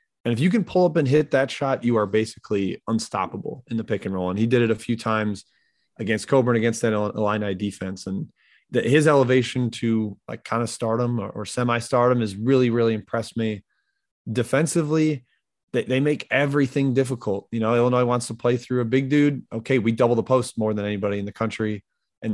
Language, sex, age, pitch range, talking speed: English, male, 20-39, 110-130 Hz, 210 wpm